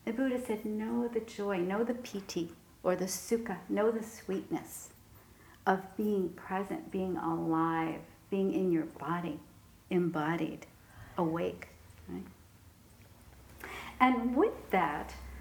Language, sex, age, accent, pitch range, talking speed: English, female, 50-69, American, 155-225 Hz, 115 wpm